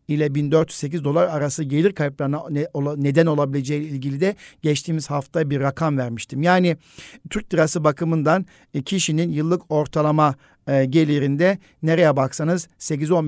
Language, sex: Turkish, male